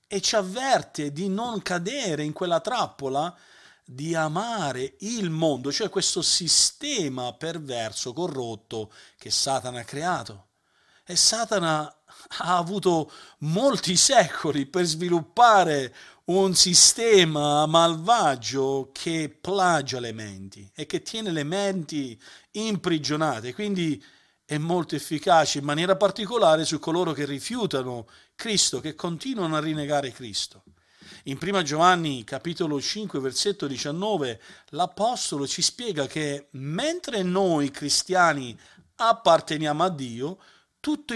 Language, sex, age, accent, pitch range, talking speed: Italian, male, 50-69, native, 140-190 Hz, 115 wpm